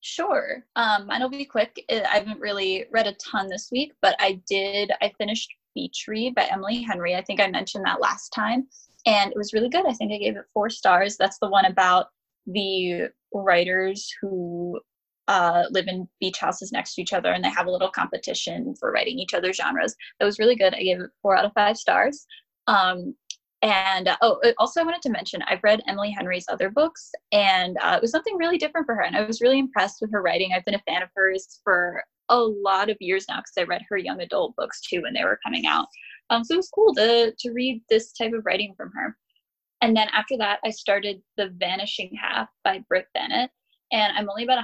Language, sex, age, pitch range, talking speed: English, female, 10-29, 190-240 Hz, 225 wpm